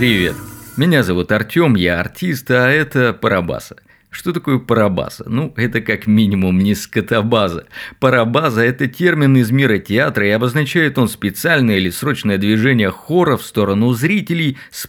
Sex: male